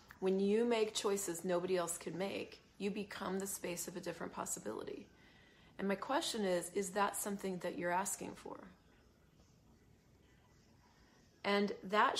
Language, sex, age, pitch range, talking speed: English, female, 30-49, 180-205 Hz, 145 wpm